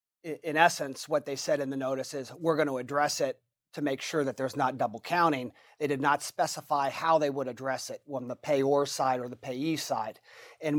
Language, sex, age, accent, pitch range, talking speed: English, male, 40-59, American, 135-155 Hz, 220 wpm